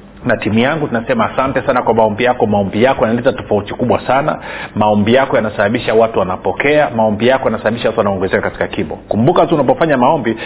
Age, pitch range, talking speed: 40-59, 100-135 Hz, 160 wpm